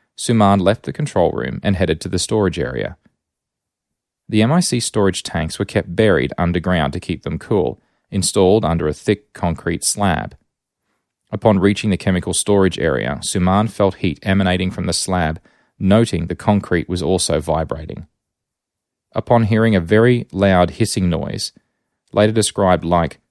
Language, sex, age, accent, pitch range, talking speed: English, male, 30-49, Australian, 90-105 Hz, 150 wpm